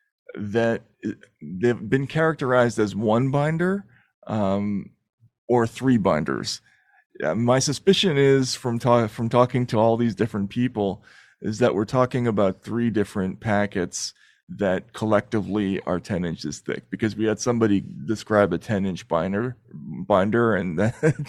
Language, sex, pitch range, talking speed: English, male, 100-125 Hz, 140 wpm